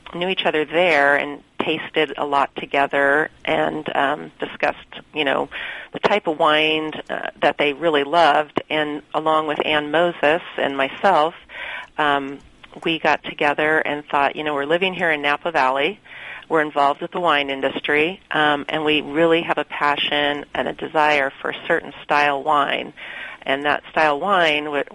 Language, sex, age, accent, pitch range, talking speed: English, female, 40-59, American, 145-160 Hz, 170 wpm